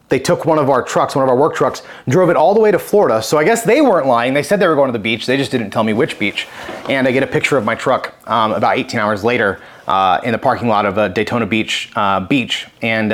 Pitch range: 120-155 Hz